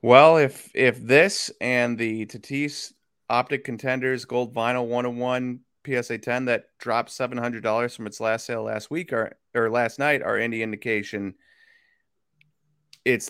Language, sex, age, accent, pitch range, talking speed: English, male, 30-49, American, 110-135 Hz, 140 wpm